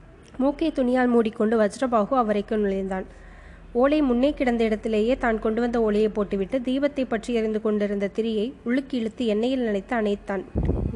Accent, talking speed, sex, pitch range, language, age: native, 135 wpm, female, 215-255 Hz, Tamil, 20-39